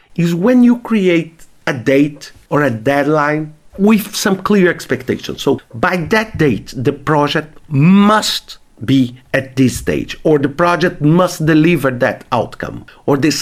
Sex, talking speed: male, 150 wpm